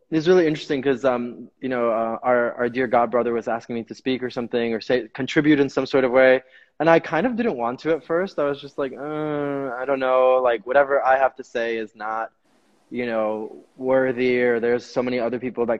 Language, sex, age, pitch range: English, male, 20-39, 120-150 Hz